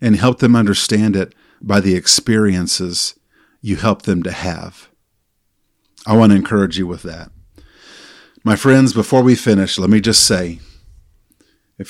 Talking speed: 145 wpm